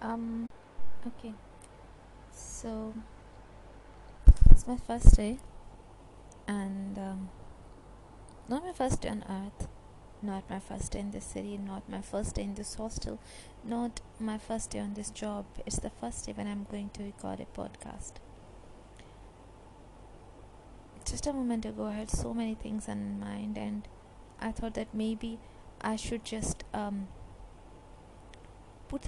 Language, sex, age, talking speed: English, female, 20-39, 140 wpm